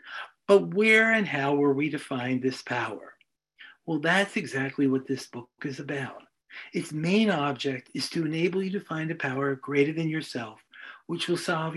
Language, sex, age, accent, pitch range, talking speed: English, male, 50-69, American, 135-175 Hz, 180 wpm